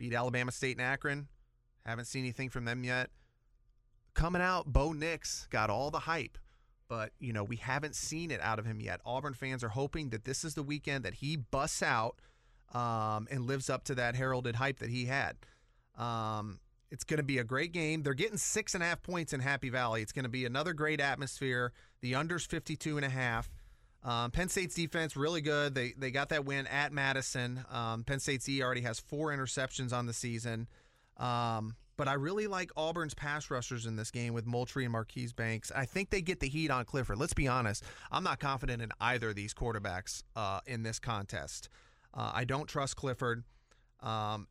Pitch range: 120-145 Hz